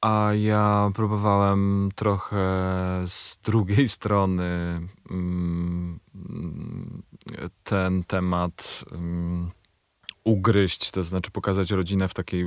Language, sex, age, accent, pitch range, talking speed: Polish, male, 30-49, native, 85-100 Hz, 75 wpm